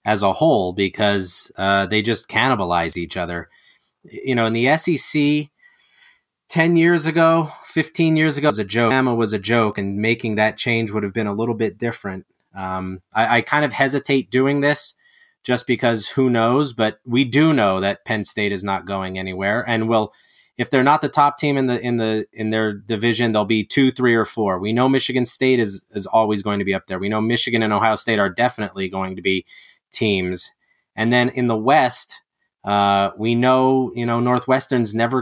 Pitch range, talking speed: 105-125 Hz, 205 wpm